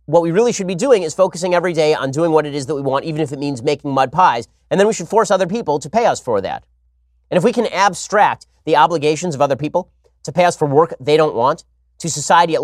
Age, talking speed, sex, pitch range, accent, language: 30-49, 275 wpm, male, 140-185 Hz, American, English